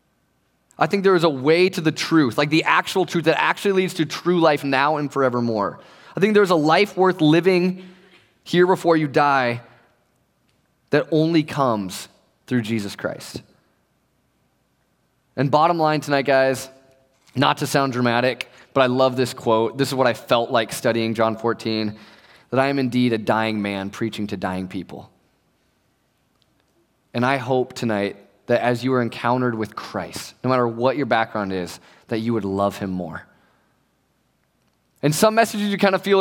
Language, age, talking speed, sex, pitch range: English, 20-39, 170 wpm, male, 125-175 Hz